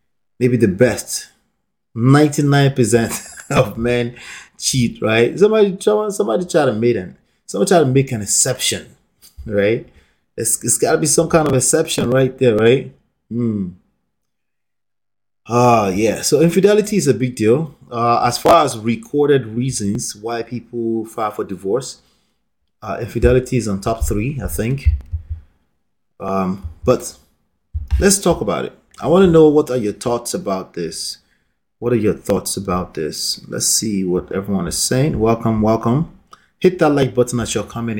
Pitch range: 100-135 Hz